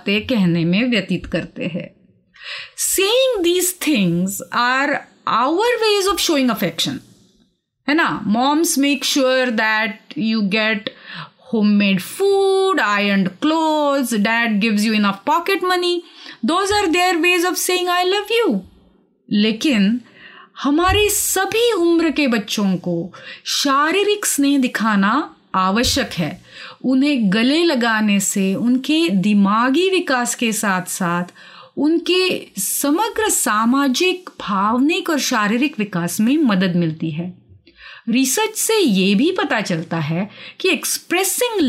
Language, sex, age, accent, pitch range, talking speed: Hindi, female, 30-49, native, 205-330 Hz, 70 wpm